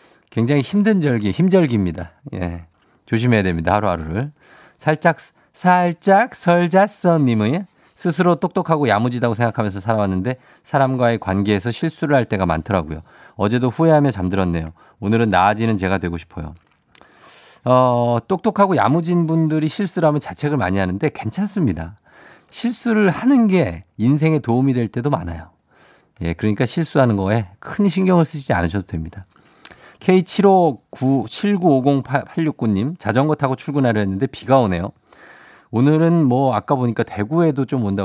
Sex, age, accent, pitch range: male, 50-69, native, 100-160 Hz